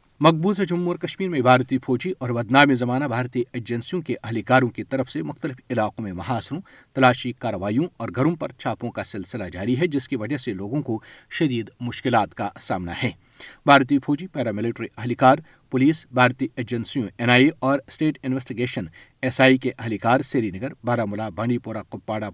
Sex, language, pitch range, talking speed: male, Urdu, 115-145 Hz, 175 wpm